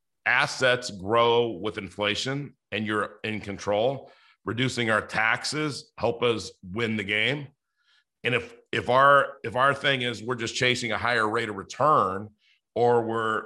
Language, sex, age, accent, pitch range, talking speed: English, male, 40-59, American, 105-125 Hz, 150 wpm